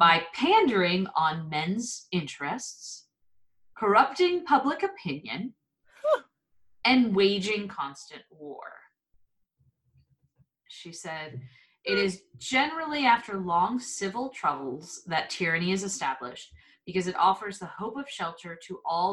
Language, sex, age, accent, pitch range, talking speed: English, female, 30-49, American, 165-240 Hz, 105 wpm